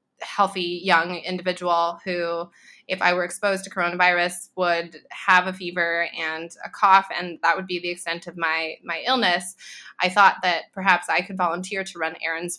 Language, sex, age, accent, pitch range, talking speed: English, female, 20-39, American, 165-185 Hz, 175 wpm